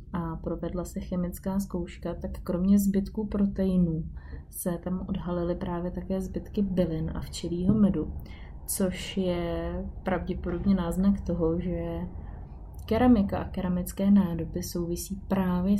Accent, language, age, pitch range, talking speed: native, Czech, 20-39, 170-195 Hz, 120 wpm